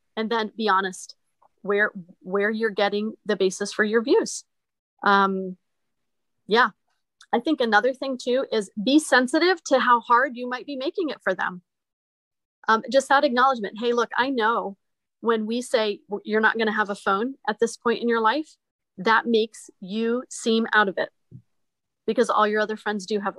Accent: American